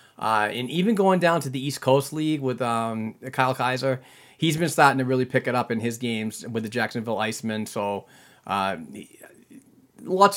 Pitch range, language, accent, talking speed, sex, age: 115-135 Hz, English, American, 190 wpm, male, 30-49